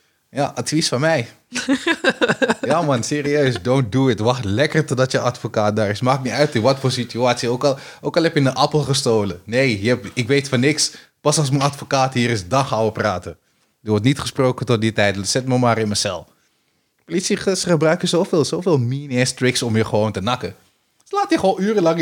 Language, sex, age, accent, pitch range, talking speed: Dutch, male, 20-39, Dutch, 110-145 Hz, 220 wpm